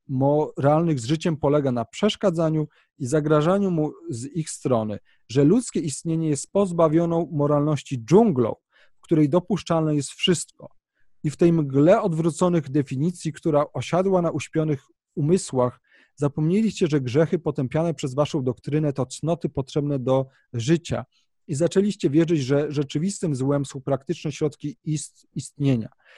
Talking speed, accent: 130 wpm, native